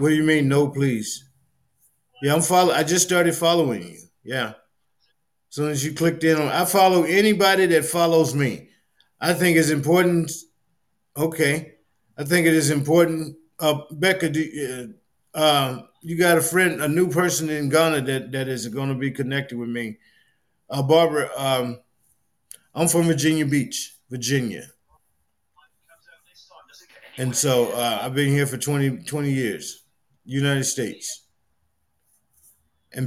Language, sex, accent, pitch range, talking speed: English, male, American, 125-160 Hz, 145 wpm